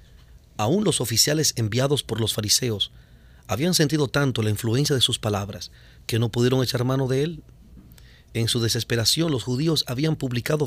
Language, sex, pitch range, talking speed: Spanish, male, 105-140 Hz, 165 wpm